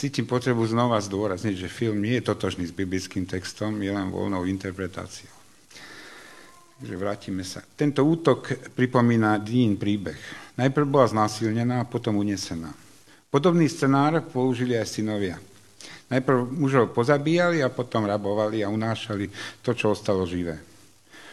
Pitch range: 105-135 Hz